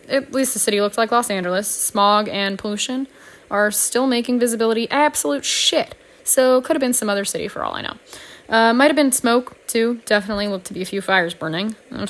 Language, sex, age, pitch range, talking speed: English, female, 10-29, 210-270 Hz, 210 wpm